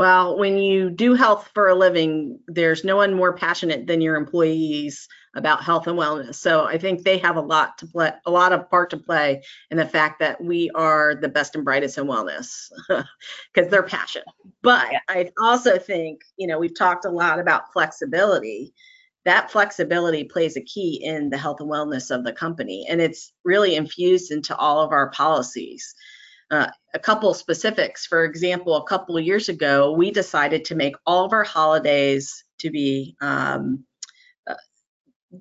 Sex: female